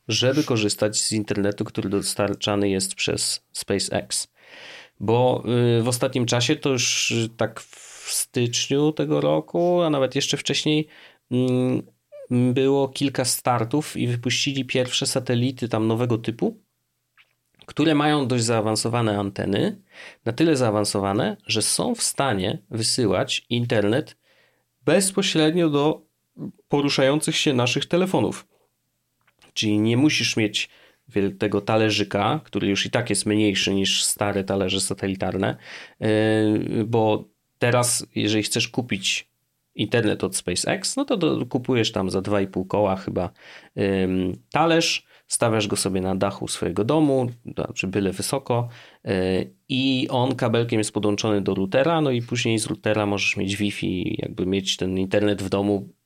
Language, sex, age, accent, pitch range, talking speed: Polish, male, 30-49, native, 100-130 Hz, 125 wpm